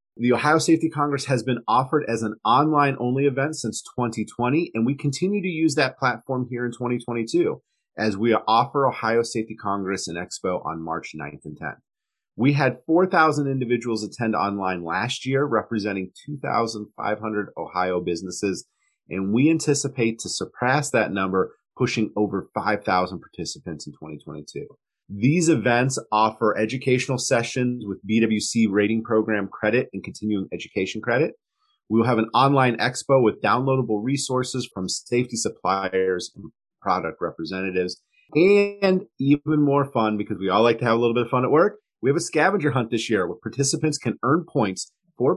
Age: 30-49